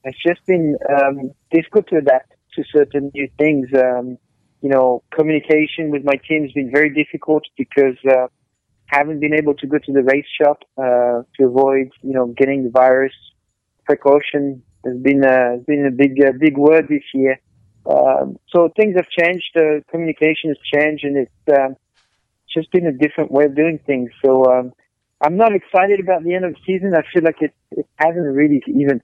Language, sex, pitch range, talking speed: English, male, 130-155 Hz, 190 wpm